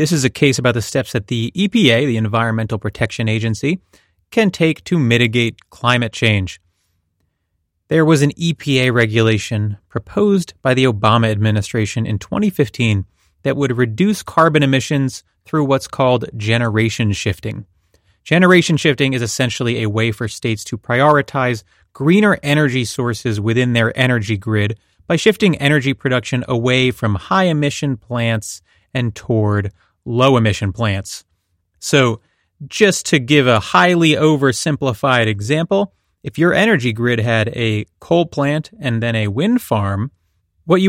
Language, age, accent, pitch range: English, 30-49, American, 110-145 Hz